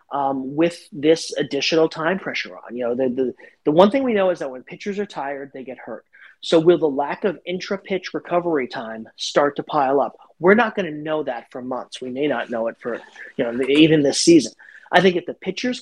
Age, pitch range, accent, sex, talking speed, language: 30-49, 135-175 Hz, American, male, 235 wpm, English